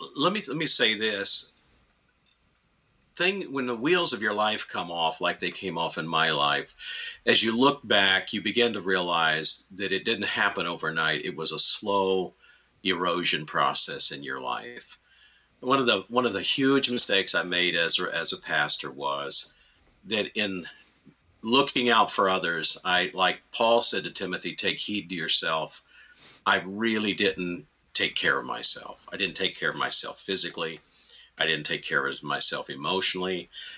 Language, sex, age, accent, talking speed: English, male, 50-69, American, 170 wpm